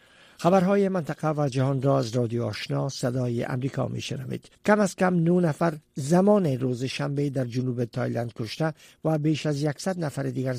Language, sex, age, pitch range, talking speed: Persian, male, 50-69, 125-155 Hz, 170 wpm